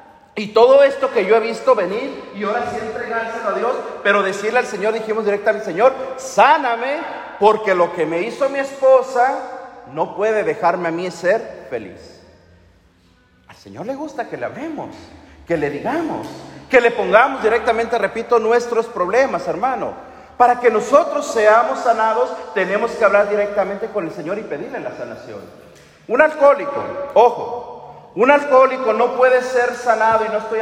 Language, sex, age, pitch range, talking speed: Spanish, male, 40-59, 205-260 Hz, 165 wpm